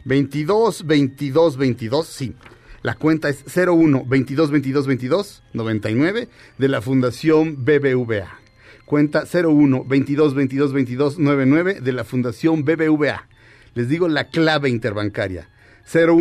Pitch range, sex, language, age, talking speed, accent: 120-165 Hz, male, Spanish, 40-59, 90 wpm, Mexican